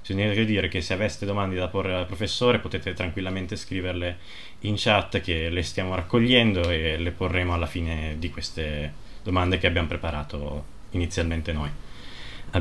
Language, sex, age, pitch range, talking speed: Italian, male, 20-39, 85-100 Hz, 155 wpm